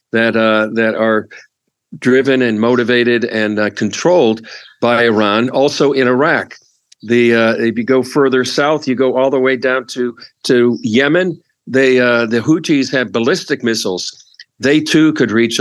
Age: 50-69